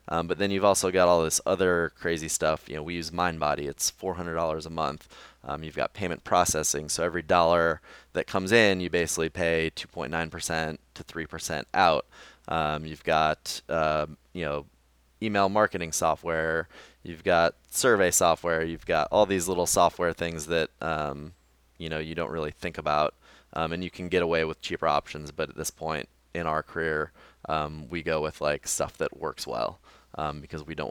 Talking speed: 185 wpm